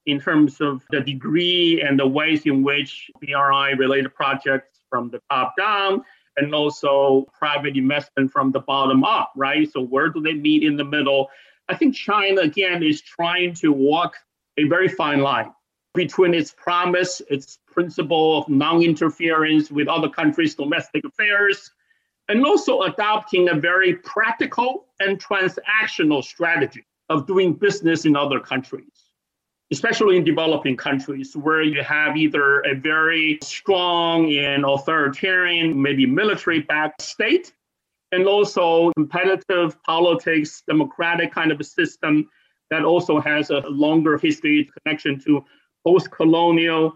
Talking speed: 135 wpm